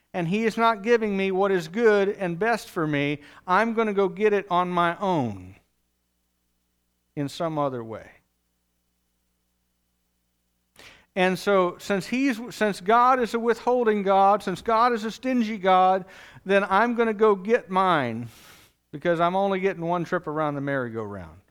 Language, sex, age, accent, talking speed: English, male, 50-69, American, 160 wpm